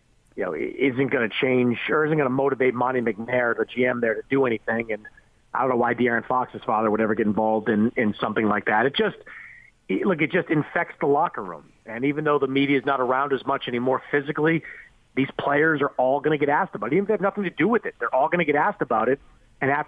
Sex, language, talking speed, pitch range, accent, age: male, English, 255 wpm, 120-155 Hz, American, 40-59